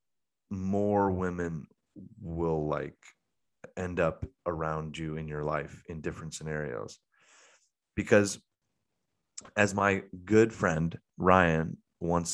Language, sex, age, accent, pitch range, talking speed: English, male, 30-49, American, 85-110 Hz, 100 wpm